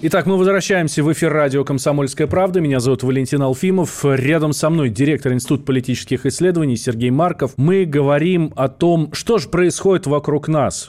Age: 20-39